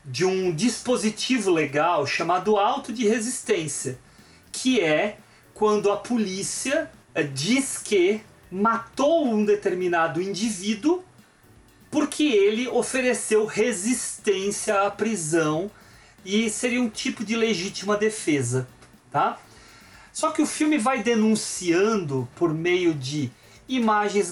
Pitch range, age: 180-230 Hz, 40-59